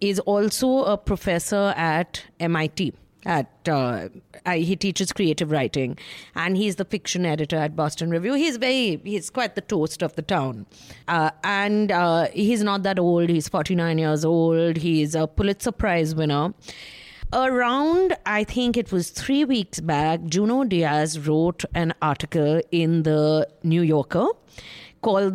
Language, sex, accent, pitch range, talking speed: English, female, Indian, 160-210 Hz, 150 wpm